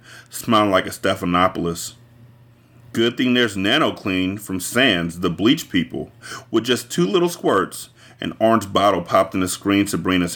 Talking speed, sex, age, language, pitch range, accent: 150 wpm, male, 30-49, English, 95-120 Hz, American